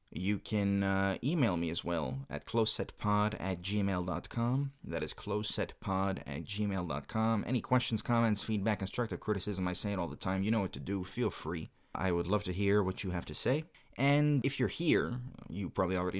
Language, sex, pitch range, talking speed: English, male, 95-115 Hz, 195 wpm